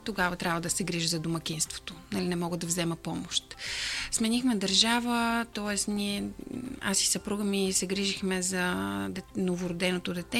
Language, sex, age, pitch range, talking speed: Bulgarian, female, 30-49, 180-215 Hz, 150 wpm